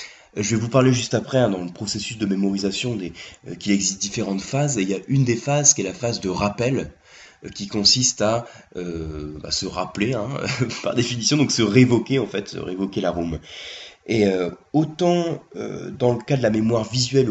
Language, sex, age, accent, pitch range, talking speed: French, male, 30-49, French, 95-125 Hz, 200 wpm